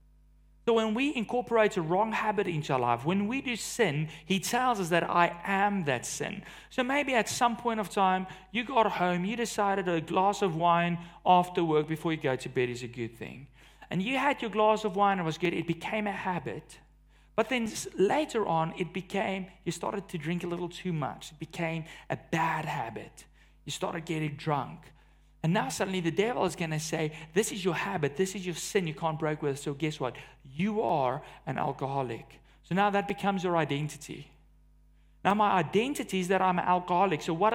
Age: 40-59